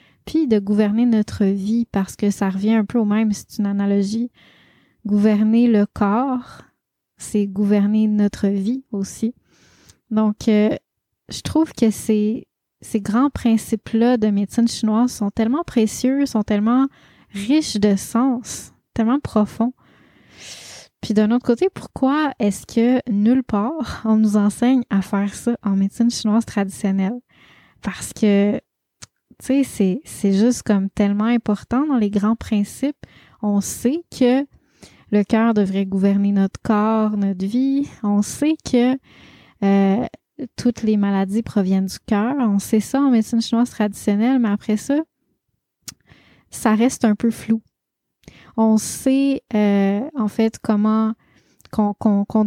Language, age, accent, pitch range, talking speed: French, 20-39, Canadian, 205-240 Hz, 140 wpm